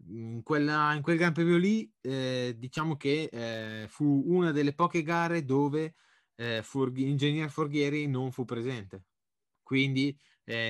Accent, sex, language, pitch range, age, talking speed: native, male, Italian, 105-135 Hz, 20-39, 145 wpm